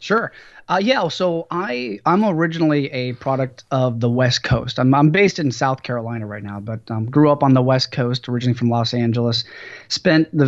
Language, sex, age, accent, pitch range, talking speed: English, male, 30-49, American, 120-140 Hz, 200 wpm